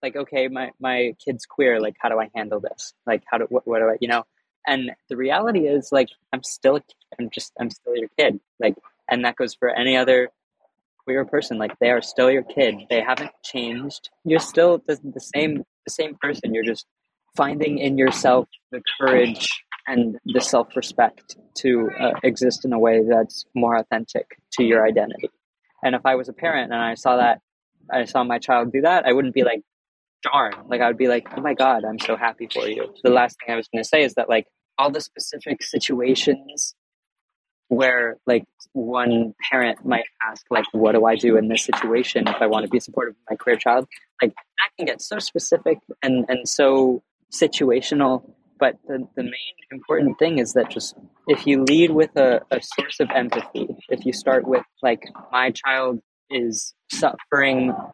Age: 20-39